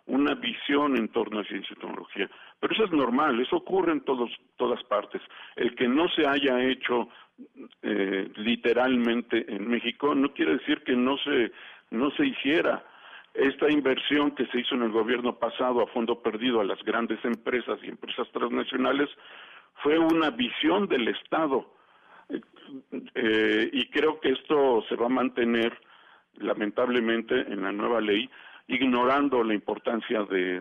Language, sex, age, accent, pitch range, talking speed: Spanish, male, 50-69, Mexican, 115-150 Hz, 155 wpm